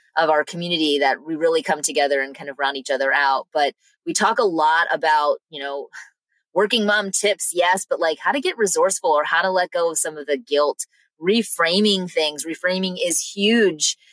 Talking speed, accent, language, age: 205 wpm, American, English, 20-39